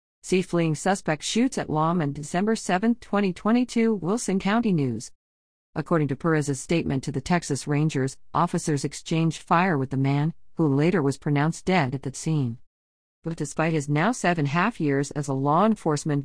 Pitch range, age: 145-195 Hz, 50-69